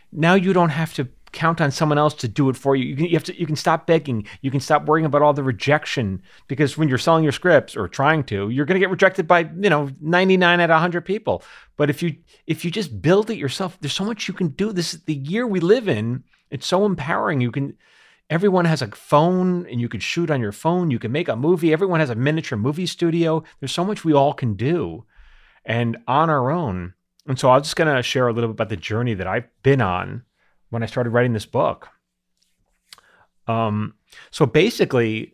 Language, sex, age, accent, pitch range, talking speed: English, male, 40-59, American, 110-165 Hz, 235 wpm